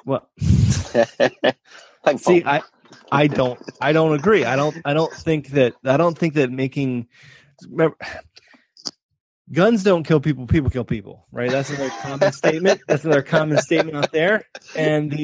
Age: 20-39